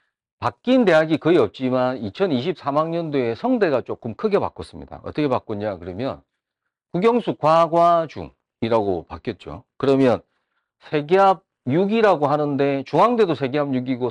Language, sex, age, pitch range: Korean, male, 40-59, 115-190 Hz